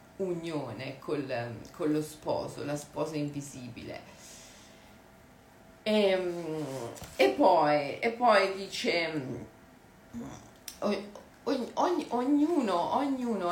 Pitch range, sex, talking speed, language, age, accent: 155-200 Hz, female, 80 wpm, Italian, 40-59, native